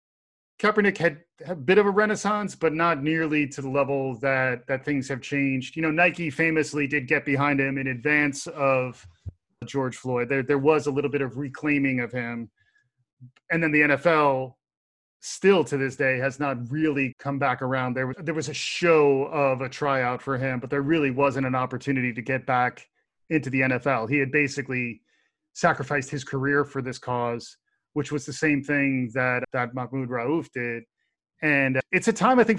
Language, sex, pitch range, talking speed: English, male, 135-155 Hz, 190 wpm